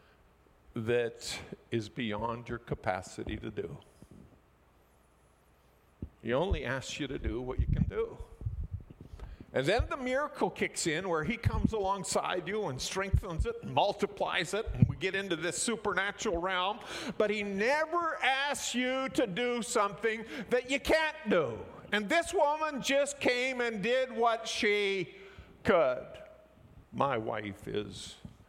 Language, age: English, 50-69